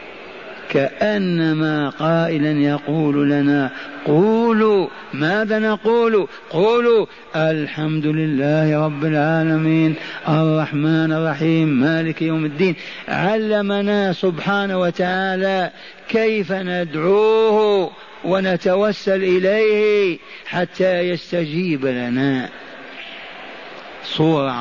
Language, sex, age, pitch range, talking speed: Arabic, male, 50-69, 150-190 Hz, 70 wpm